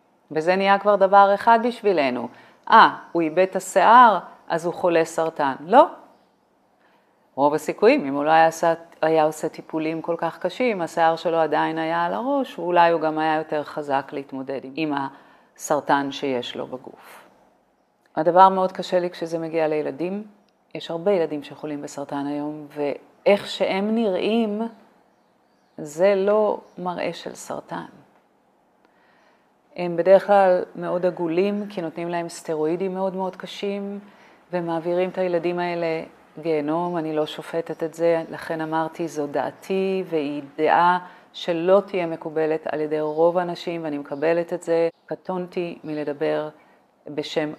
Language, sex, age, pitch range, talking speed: Hebrew, female, 40-59, 155-185 Hz, 140 wpm